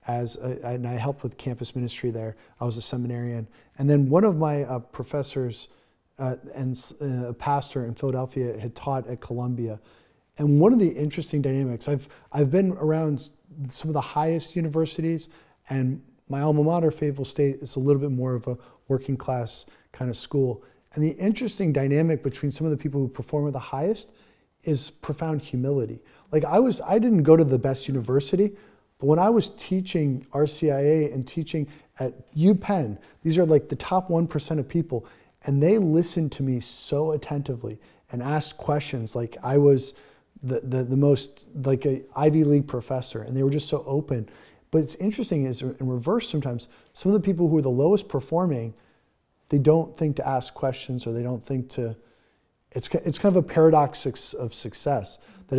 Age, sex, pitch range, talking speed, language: 40-59, male, 130-155 Hz, 185 wpm, English